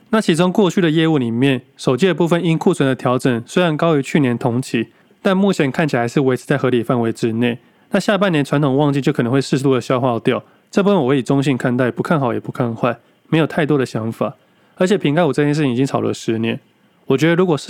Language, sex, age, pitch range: Chinese, male, 20-39, 120-160 Hz